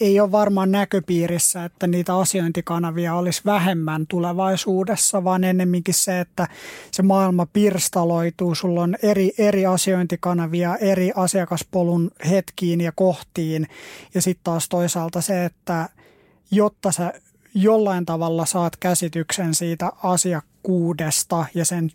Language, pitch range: Finnish, 170-190 Hz